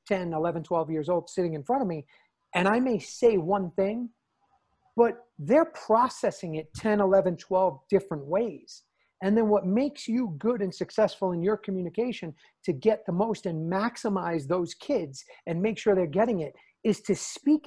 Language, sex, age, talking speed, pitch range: English, male, 40-59, 180 wpm, 170-225 Hz